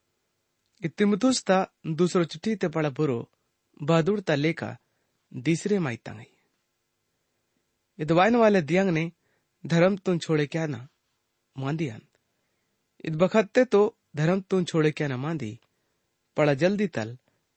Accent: Indian